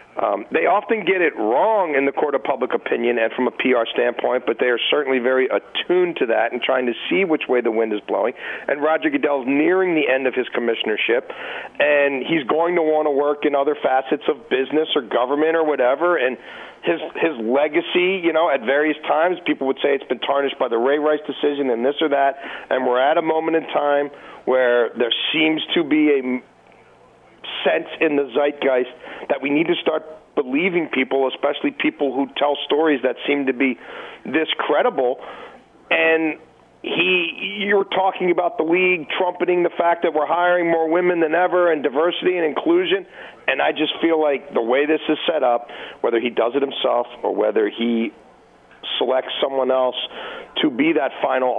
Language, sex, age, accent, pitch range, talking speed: English, male, 40-59, American, 130-175 Hz, 200 wpm